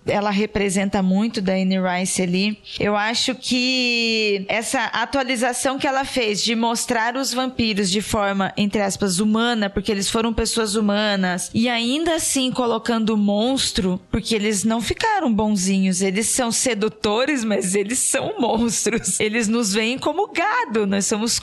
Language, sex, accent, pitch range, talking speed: Portuguese, female, Brazilian, 210-260 Hz, 150 wpm